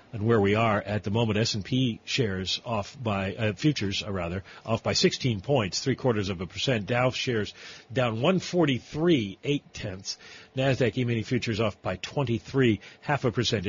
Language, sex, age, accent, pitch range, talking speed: English, male, 40-59, American, 110-150 Hz, 170 wpm